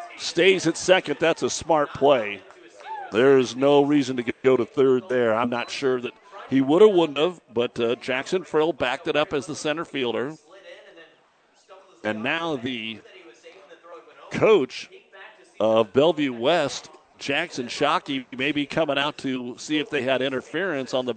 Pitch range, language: 115-150 Hz, English